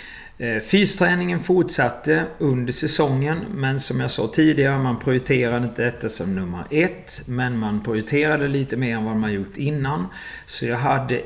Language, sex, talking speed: Swedish, male, 155 wpm